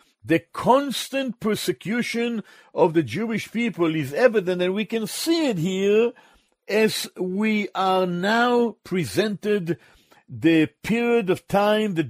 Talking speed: 125 wpm